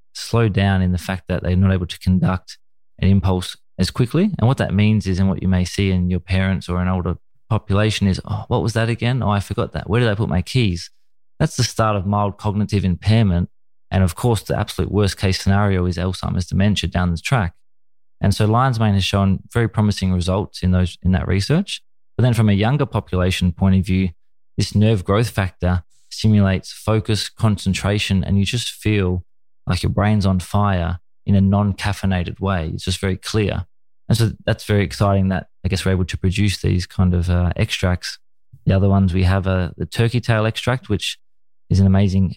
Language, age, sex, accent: English, 20-39, male, Australian